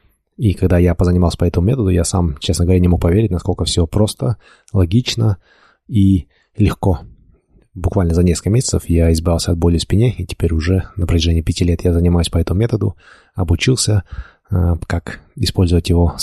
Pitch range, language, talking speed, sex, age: 85-95 Hz, Russian, 175 wpm, male, 20-39